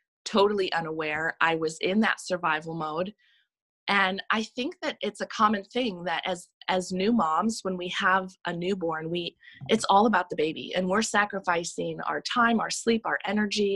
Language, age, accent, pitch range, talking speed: English, 20-39, American, 170-205 Hz, 180 wpm